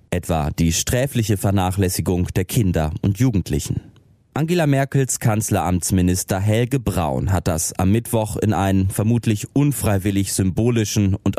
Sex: male